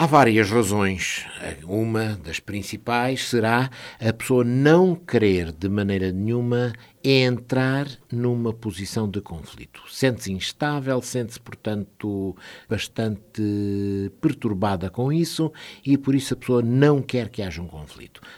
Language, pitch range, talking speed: Portuguese, 95-130 Hz, 125 wpm